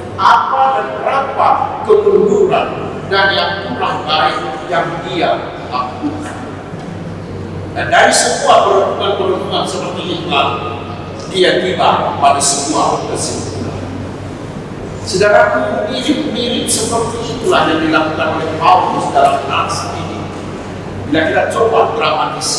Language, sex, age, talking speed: Indonesian, male, 60-79, 105 wpm